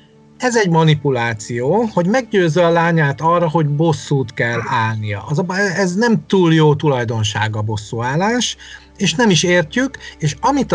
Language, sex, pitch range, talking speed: Hungarian, male, 130-170 Hz, 145 wpm